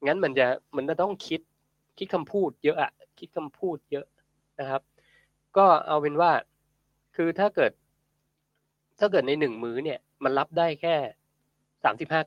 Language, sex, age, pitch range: Thai, male, 20-39, 125-160 Hz